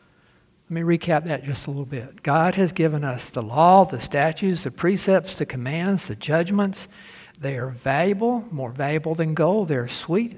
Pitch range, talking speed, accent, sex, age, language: 135-160 Hz, 180 wpm, American, male, 60-79, English